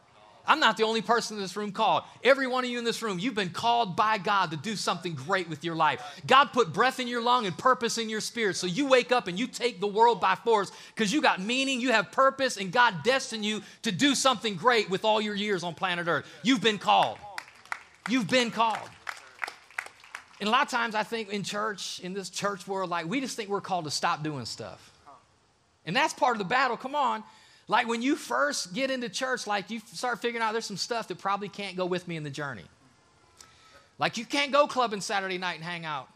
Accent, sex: American, male